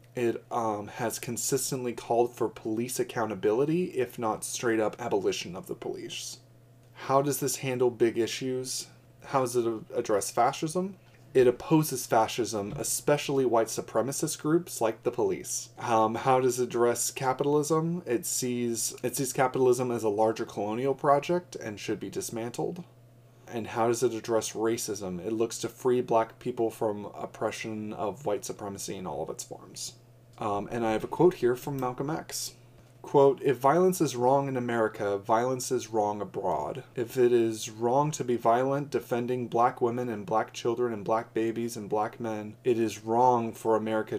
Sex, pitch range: male, 110-125 Hz